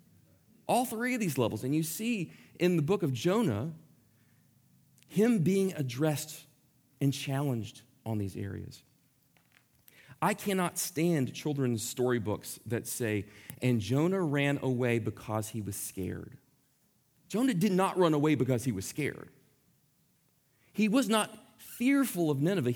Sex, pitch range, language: male, 125-185 Hz, English